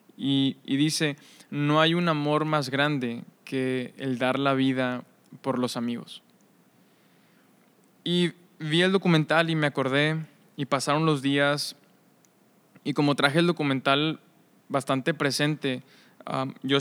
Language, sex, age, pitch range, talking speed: Spanish, male, 20-39, 130-155 Hz, 130 wpm